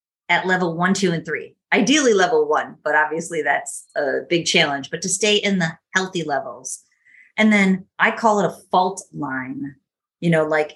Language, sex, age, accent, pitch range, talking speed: English, female, 30-49, American, 155-200 Hz, 185 wpm